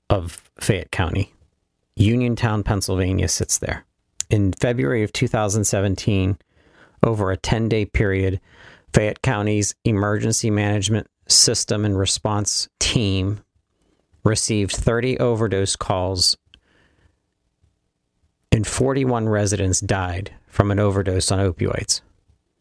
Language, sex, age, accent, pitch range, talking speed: English, male, 40-59, American, 95-115 Hz, 100 wpm